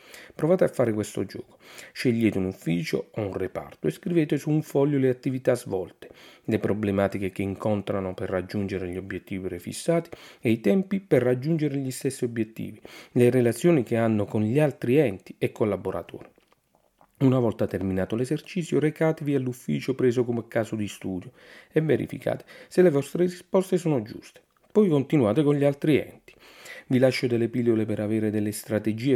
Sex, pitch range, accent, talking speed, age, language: male, 105-140 Hz, native, 165 wpm, 40-59, Italian